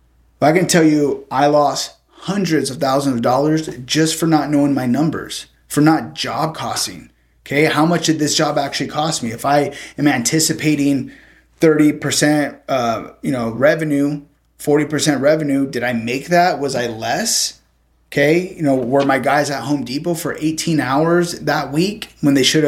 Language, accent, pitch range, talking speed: English, American, 125-150 Hz, 170 wpm